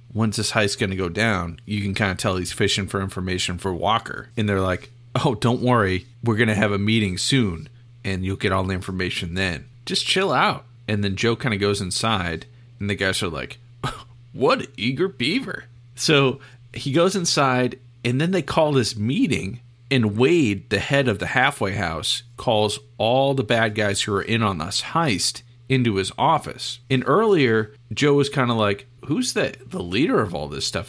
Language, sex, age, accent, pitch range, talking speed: English, male, 40-59, American, 100-125 Hz, 200 wpm